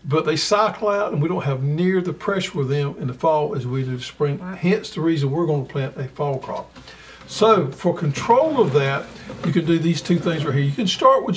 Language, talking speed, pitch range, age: English, 255 wpm, 135-175 Hz, 60-79